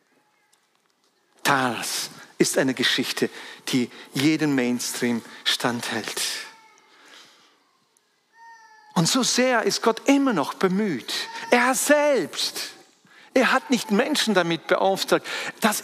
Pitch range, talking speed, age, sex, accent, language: 165-260 Hz, 95 wpm, 50-69, male, German, German